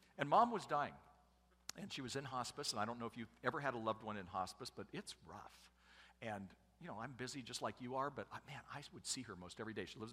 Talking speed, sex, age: 275 wpm, male, 50-69